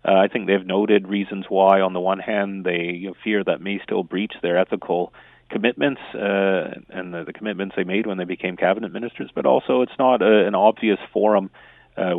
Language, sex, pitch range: English, male, 90-100 Hz